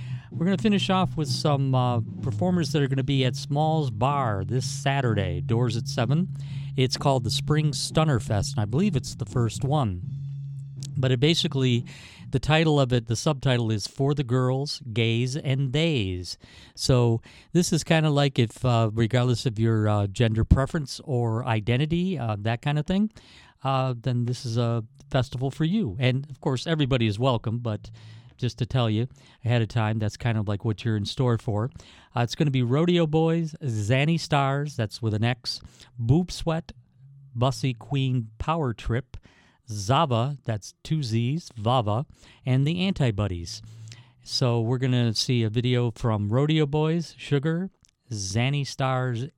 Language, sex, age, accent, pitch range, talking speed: English, male, 50-69, American, 115-140 Hz, 175 wpm